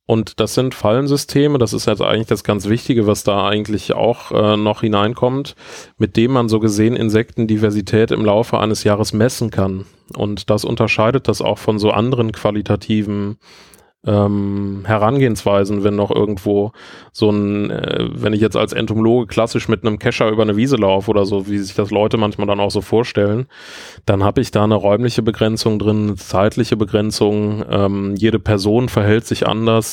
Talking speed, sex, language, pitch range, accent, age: 175 wpm, male, German, 105-115 Hz, German, 20-39